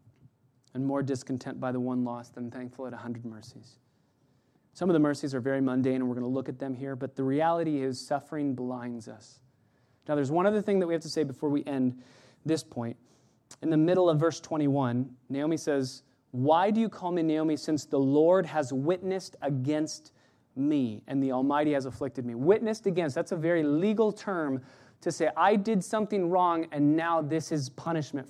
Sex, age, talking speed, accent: male, 30-49, 200 wpm, American